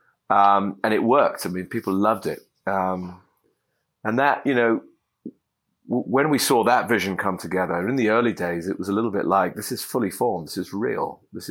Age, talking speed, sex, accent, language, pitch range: 30-49, 210 wpm, male, British, English, 90-110 Hz